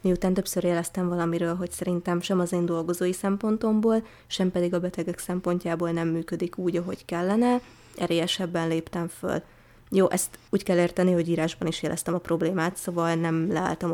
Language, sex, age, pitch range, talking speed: Hungarian, female, 20-39, 170-195 Hz, 165 wpm